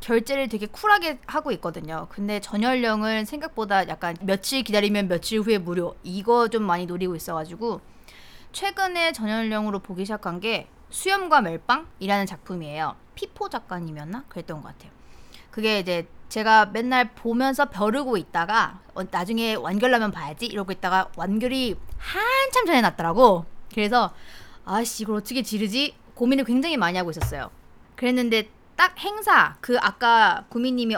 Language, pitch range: Korean, 190-265 Hz